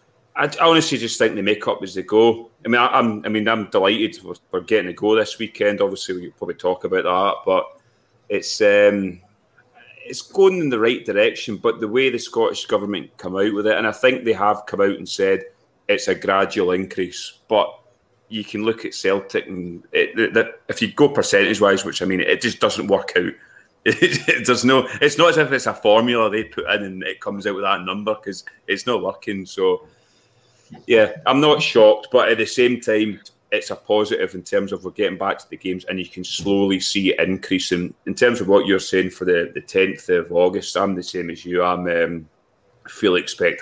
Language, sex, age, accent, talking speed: English, male, 30-49, British, 220 wpm